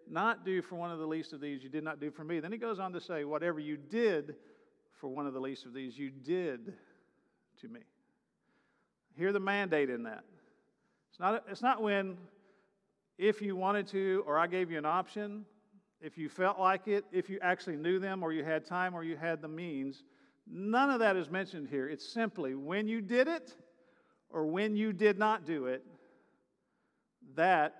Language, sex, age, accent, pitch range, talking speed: English, male, 50-69, American, 155-205 Hz, 205 wpm